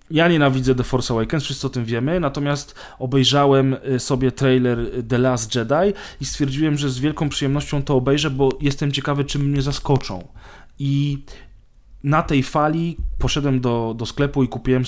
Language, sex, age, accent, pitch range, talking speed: Polish, male, 20-39, native, 125-140 Hz, 160 wpm